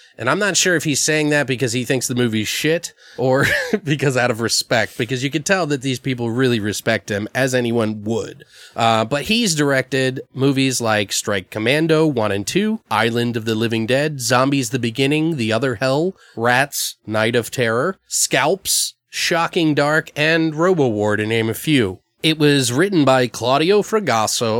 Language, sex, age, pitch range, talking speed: English, male, 30-49, 115-145 Hz, 180 wpm